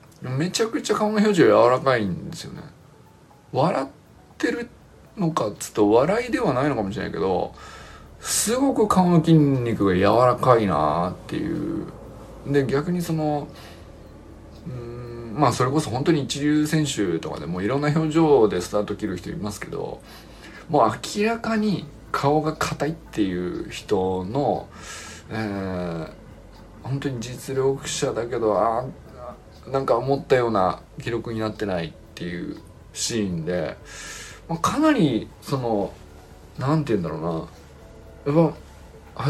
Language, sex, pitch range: Japanese, male, 100-155 Hz